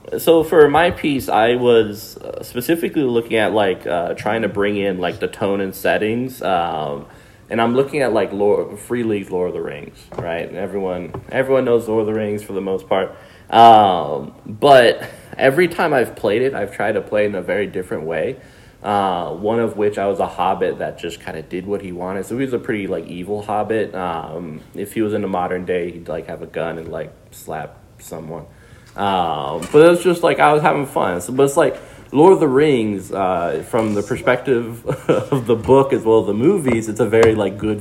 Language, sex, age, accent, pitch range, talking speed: English, male, 20-39, American, 100-115 Hz, 215 wpm